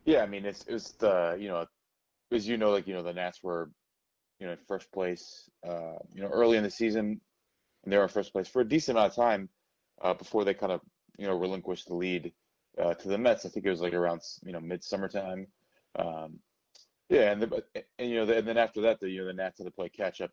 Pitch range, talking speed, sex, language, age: 90-100 Hz, 235 wpm, male, English, 20-39